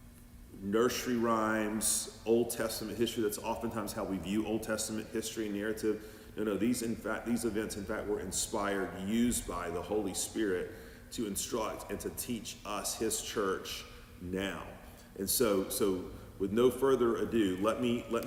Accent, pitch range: American, 95-115 Hz